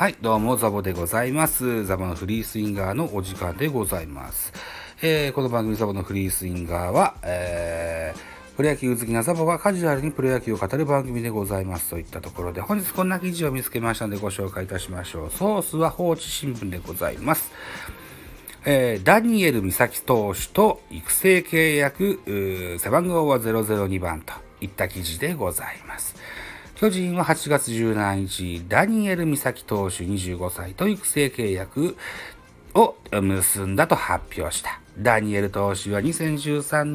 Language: Japanese